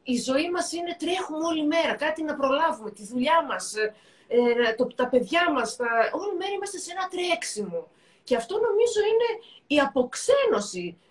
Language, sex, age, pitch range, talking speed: Greek, female, 30-49, 230-340 Hz, 160 wpm